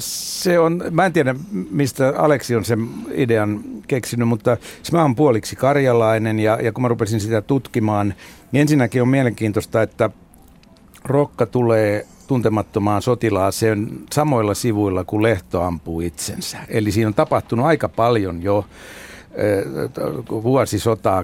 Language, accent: Finnish, native